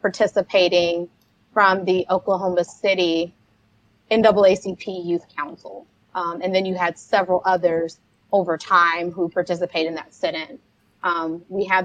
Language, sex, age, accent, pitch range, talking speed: English, female, 30-49, American, 175-200 Hz, 120 wpm